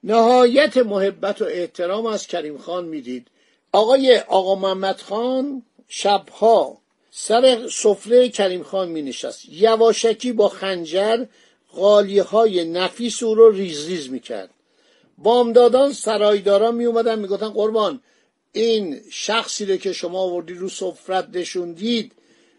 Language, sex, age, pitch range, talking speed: Persian, male, 50-69, 180-235 Hz, 115 wpm